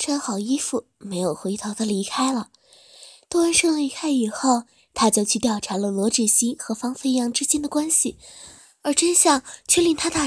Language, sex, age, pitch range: Chinese, female, 20-39, 225-310 Hz